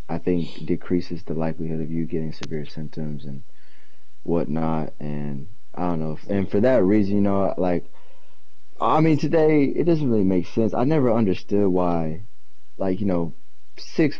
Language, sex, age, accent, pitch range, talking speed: English, male, 20-39, American, 85-100 Hz, 165 wpm